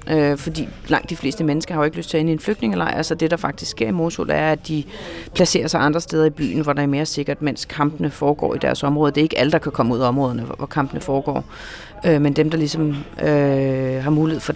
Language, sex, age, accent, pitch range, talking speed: Danish, female, 40-59, native, 145-185 Hz, 270 wpm